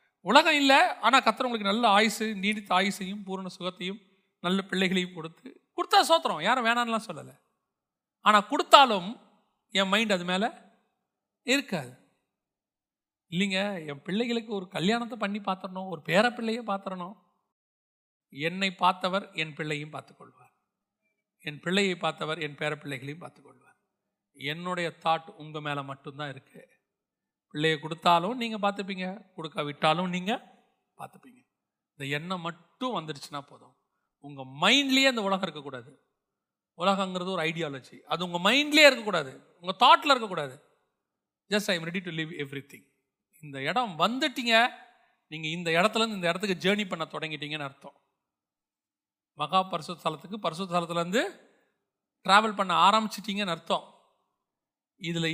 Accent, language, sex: native, Tamil, male